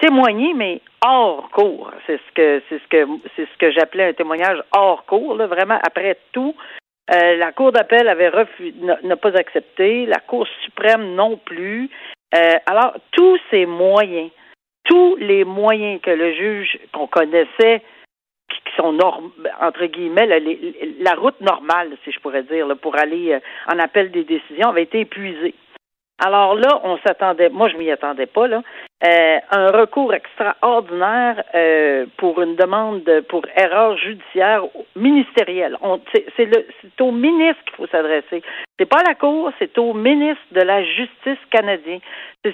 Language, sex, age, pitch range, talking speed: French, female, 60-79, 175-245 Hz, 165 wpm